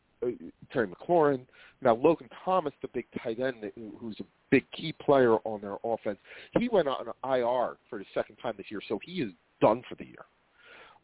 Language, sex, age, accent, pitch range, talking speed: English, male, 40-59, American, 125-170 Hz, 195 wpm